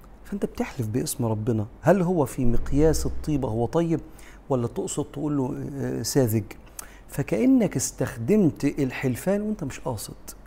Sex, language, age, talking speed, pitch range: male, Arabic, 50-69, 120 wpm, 115-150 Hz